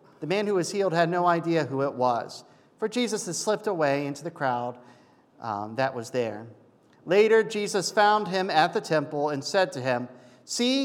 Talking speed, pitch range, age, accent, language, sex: 195 wpm, 120-160 Hz, 50-69, American, English, male